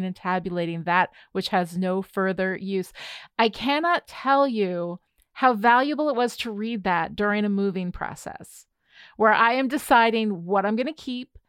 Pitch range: 190-240 Hz